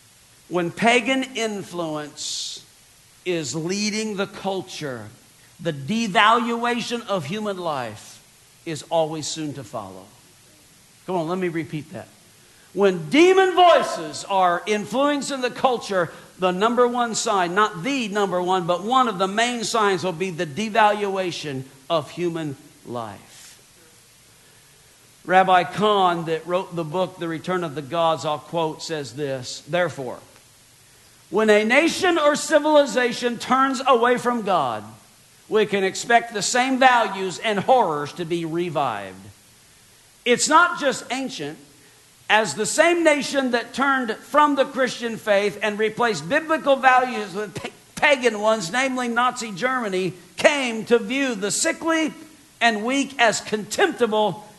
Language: English